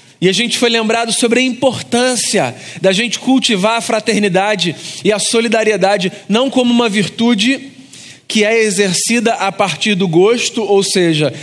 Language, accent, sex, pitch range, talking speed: Portuguese, Brazilian, male, 185-225 Hz, 150 wpm